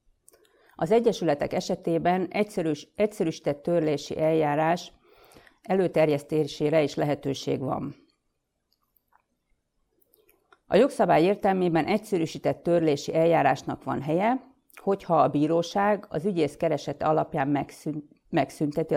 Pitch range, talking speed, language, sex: 150-200 Hz, 80 wpm, Hungarian, female